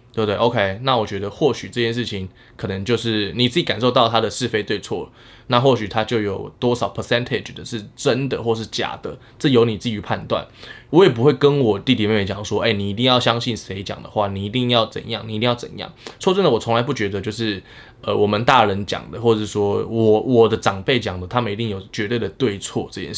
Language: Chinese